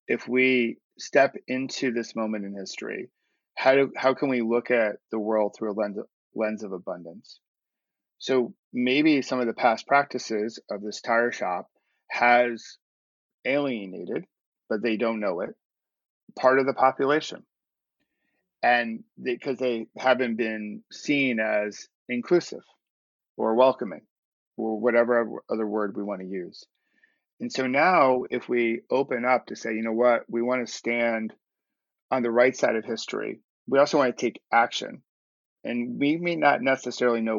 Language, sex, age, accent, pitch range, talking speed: English, male, 40-59, American, 110-130 Hz, 155 wpm